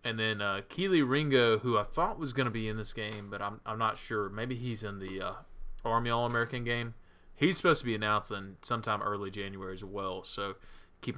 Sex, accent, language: male, American, English